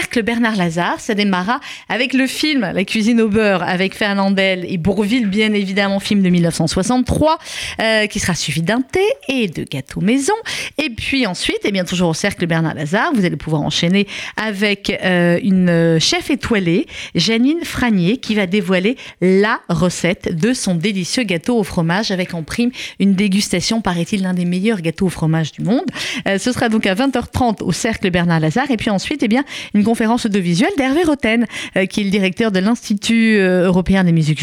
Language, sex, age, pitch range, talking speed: French, female, 40-59, 185-245 Hz, 185 wpm